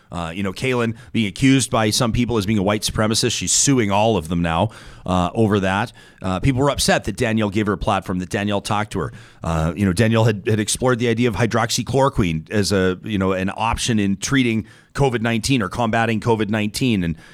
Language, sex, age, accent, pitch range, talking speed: English, male, 30-49, American, 100-125 Hz, 215 wpm